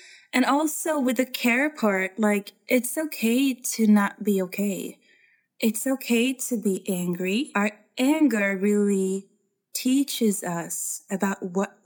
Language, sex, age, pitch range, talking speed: English, female, 20-39, 200-250 Hz, 125 wpm